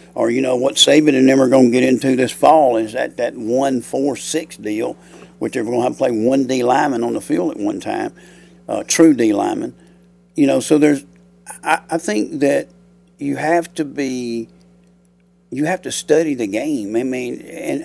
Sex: male